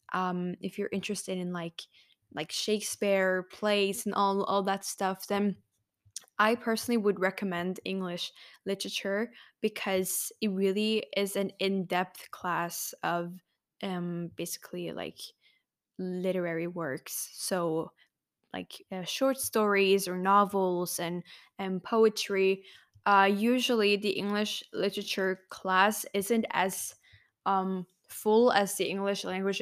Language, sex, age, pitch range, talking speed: English, female, 10-29, 185-205 Hz, 120 wpm